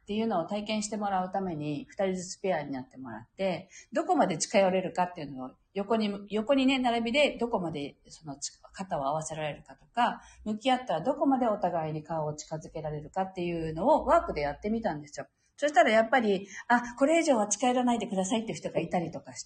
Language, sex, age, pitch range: Japanese, female, 40-59, 165-240 Hz